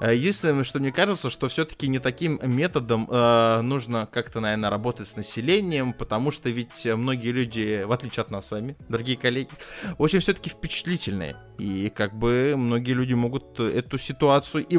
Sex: male